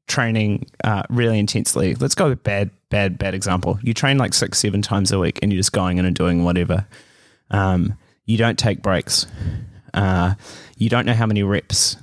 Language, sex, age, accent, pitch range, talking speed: English, male, 20-39, Australian, 100-125 Hz, 195 wpm